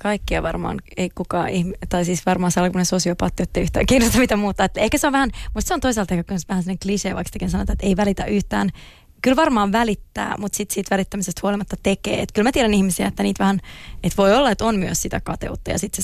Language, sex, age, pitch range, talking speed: Finnish, female, 20-39, 185-210 Hz, 225 wpm